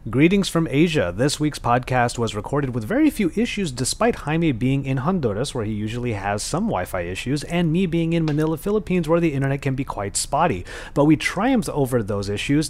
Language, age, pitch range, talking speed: English, 30-49, 115-160 Hz, 205 wpm